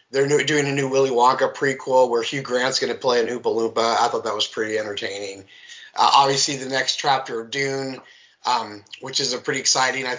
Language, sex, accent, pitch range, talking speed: English, male, American, 125-150 Hz, 205 wpm